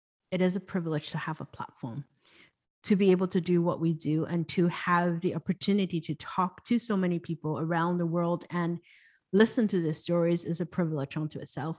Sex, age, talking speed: female, 30-49, 205 wpm